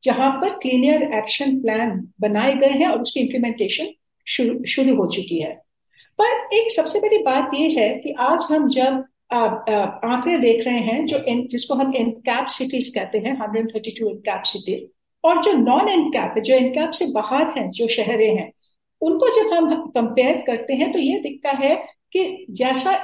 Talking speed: 165 wpm